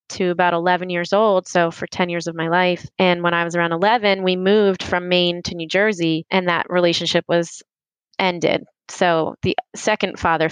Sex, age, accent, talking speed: female, 20-39, American, 195 wpm